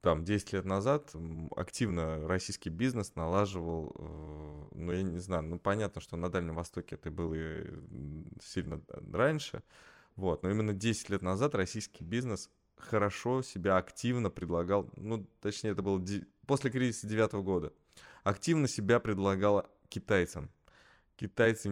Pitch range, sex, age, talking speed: 85-100 Hz, male, 20-39, 135 wpm